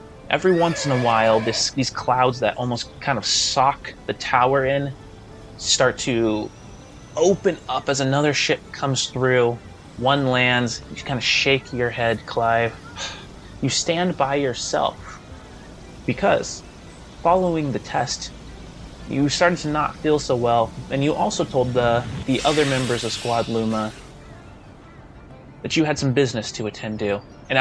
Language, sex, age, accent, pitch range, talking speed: English, male, 20-39, American, 110-140 Hz, 150 wpm